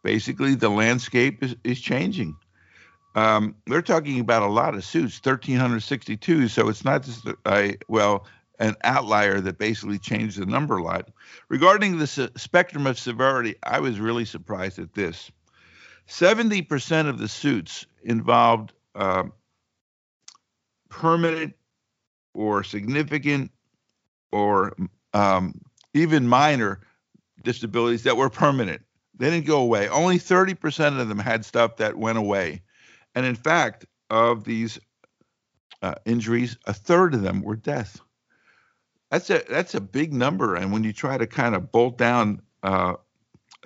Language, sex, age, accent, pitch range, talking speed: English, male, 50-69, American, 105-135 Hz, 135 wpm